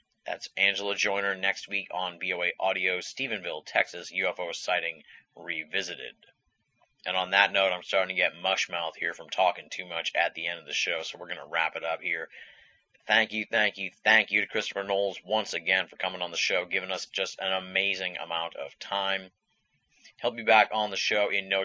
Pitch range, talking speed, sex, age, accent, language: 90-100 Hz, 205 wpm, male, 30-49, American, English